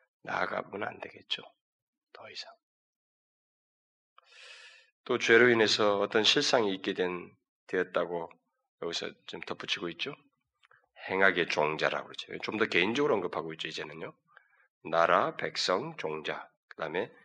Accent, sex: native, male